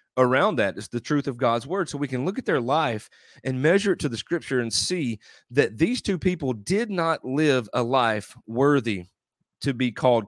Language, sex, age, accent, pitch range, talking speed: English, male, 40-59, American, 120-150 Hz, 210 wpm